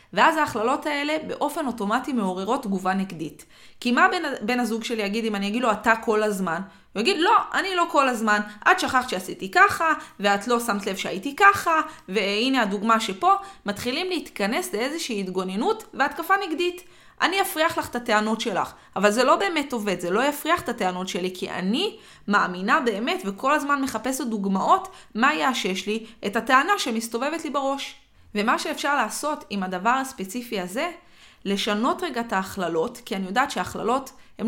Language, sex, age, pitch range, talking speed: Hebrew, female, 20-39, 200-285 Hz, 170 wpm